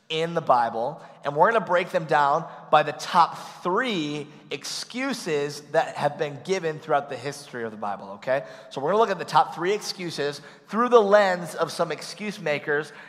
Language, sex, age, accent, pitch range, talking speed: English, male, 30-49, American, 160-235 Hz, 195 wpm